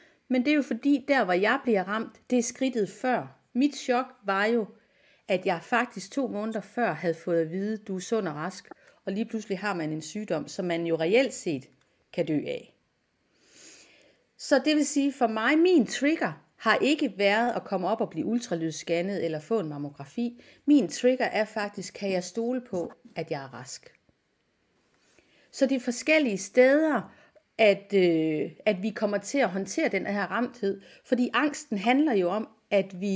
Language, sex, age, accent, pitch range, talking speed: Danish, female, 40-59, native, 195-250 Hz, 185 wpm